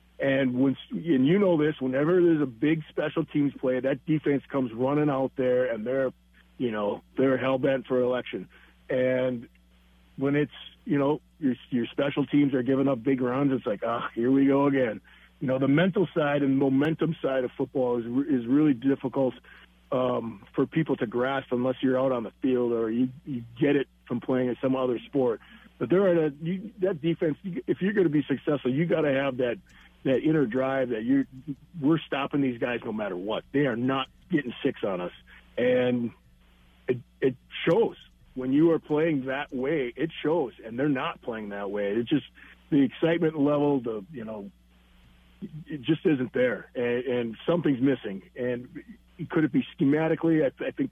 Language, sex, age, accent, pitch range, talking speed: English, male, 40-59, American, 125-150 Hz, 195 wpm